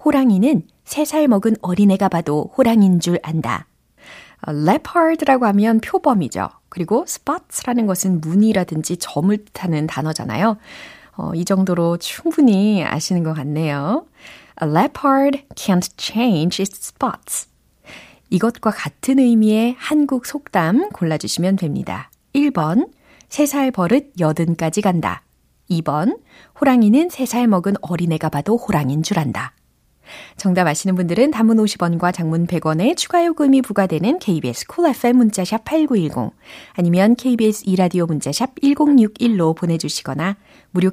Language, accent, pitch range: Korean, native, 165-245 Hz